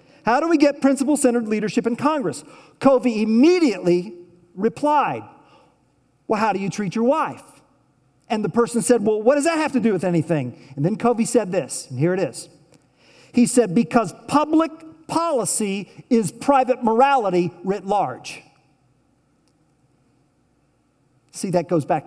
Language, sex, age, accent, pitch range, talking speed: English, male, 50-69, American, 160-250 Hz, 145 wpm